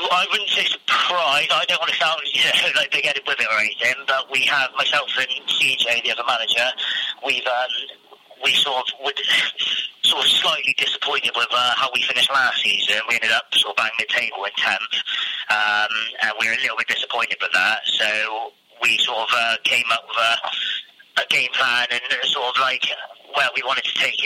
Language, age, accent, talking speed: English, 30-49, British, 210 wpm